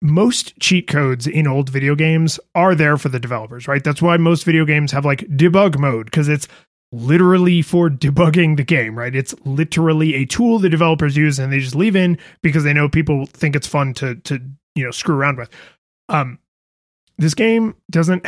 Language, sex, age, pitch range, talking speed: English, male, 30-49, 140-170 Hz, 195 wpm